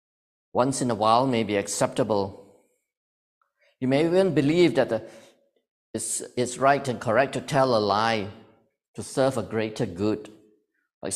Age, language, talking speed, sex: 50-69, English, 140 wpm, male